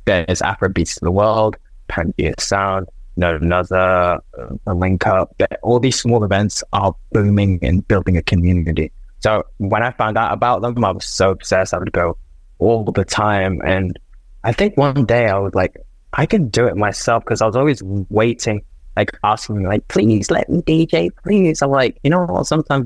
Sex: male